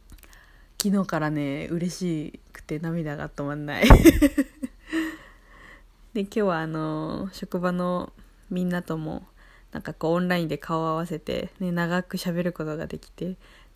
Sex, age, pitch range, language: female, 20-39, 160-195 Hz, Japanese